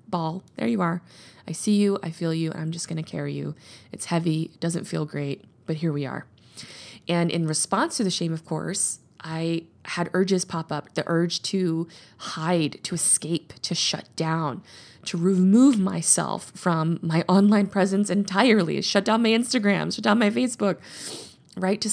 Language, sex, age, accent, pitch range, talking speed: English, female, 20-39, American, 165-205 Hz, 185 wpm